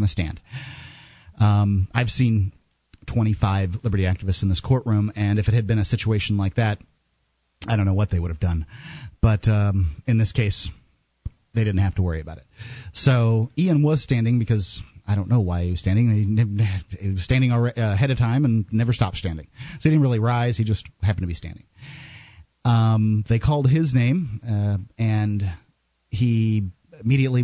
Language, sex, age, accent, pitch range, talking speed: English, male, 40-59, American, 100-125 Hz, 180 wpm